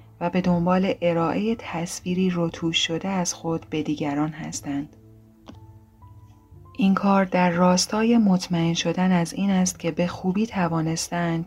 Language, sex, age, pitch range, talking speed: Persian, female, 30-49, 140-180 Hz, 130 wpm